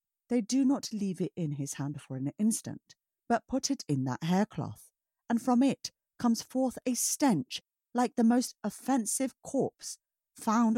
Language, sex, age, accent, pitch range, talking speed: English, female, 50-69, British, 150-230 Hz, 165 wpm